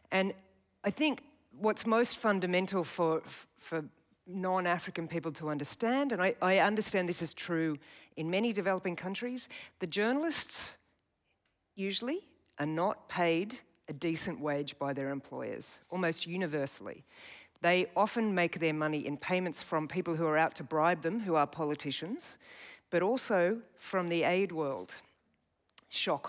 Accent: Australian